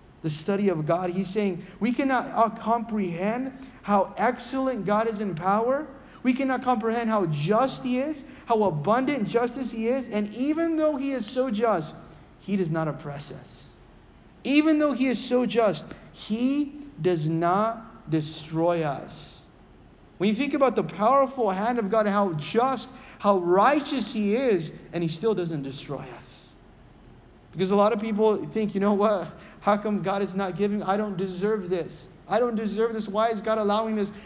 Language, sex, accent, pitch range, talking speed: English, male, American, 180-230 Hz, 175 wpm